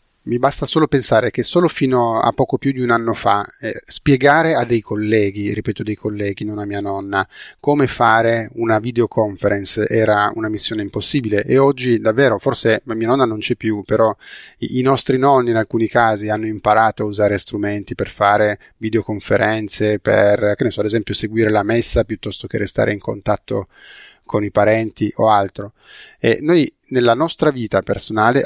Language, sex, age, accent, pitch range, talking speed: Italian, male, 30-49, native, 105-130 Hz, 180 wpm